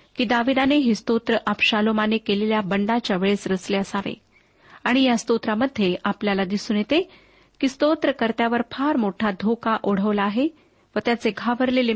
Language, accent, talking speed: Marathi, native, 130 wpm